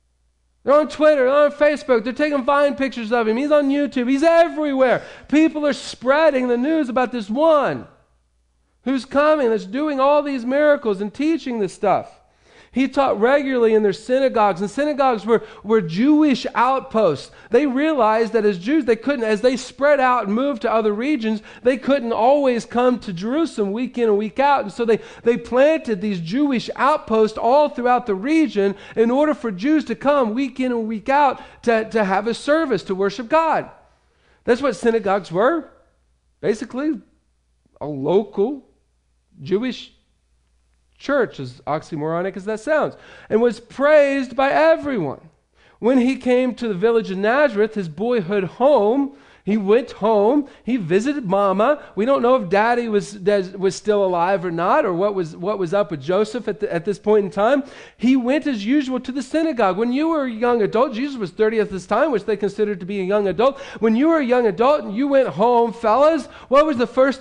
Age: 40-59